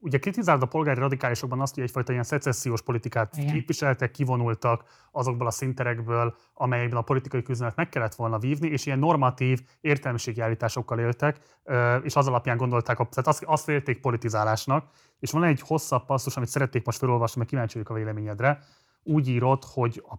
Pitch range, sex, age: 120-145 Hz, male, 30-49